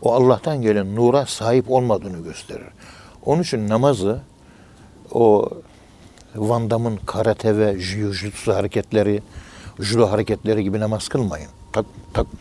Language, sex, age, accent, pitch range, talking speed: Turkish, male, 60-79, native, 95-120 Hz, 115 wpm